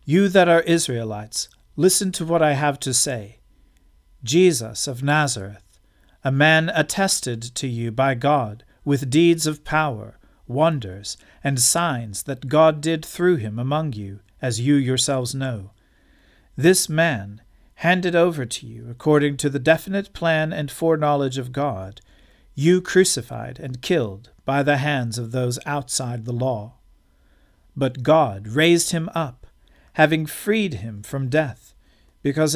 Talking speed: 140 wpm